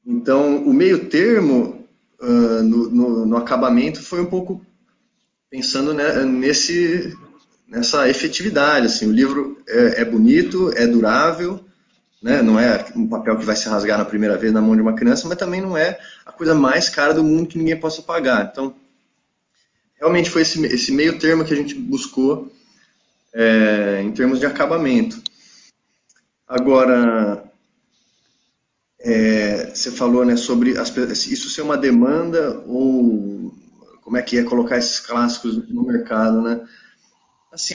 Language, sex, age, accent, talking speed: Portuguese, male, 20-39, Brazilian, 140 wpm